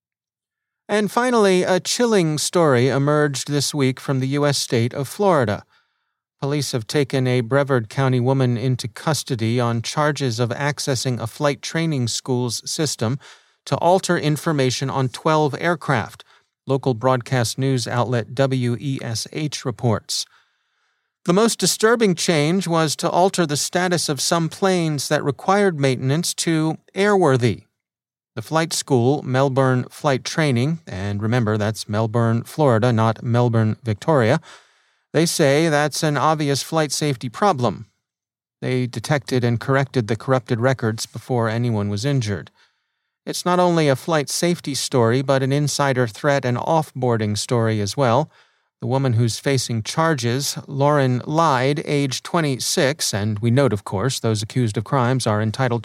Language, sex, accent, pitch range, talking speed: English, male, American, 120-155 Hz, 140 wpm